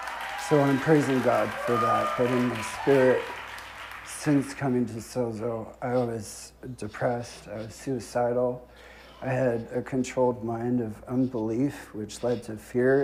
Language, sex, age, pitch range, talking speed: English, male, 50-69, 95-130 Hz, 145 wpm